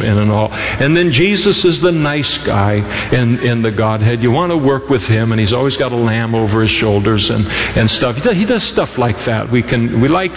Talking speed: 250 wpm